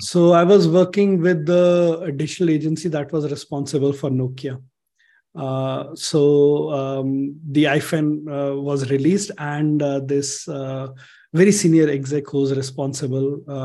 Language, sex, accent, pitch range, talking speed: English, male, Indian, 140-170 Hz, 130 wpm